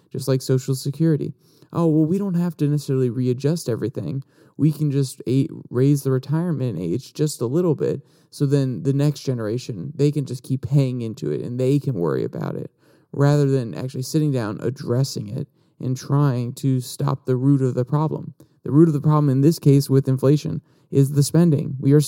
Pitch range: 135-155 Hz